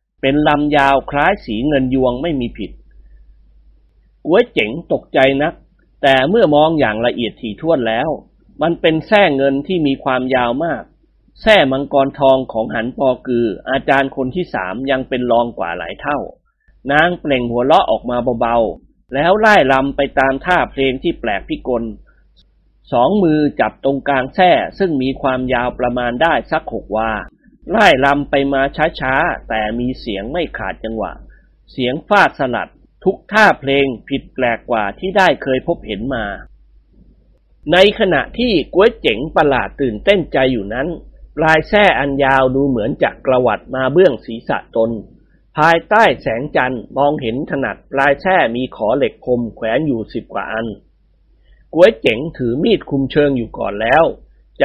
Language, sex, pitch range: Thai, male, 115-145 Hz